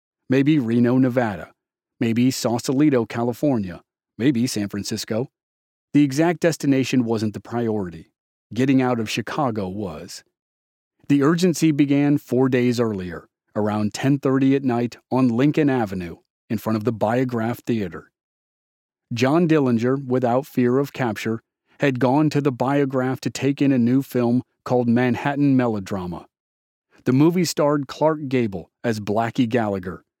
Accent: American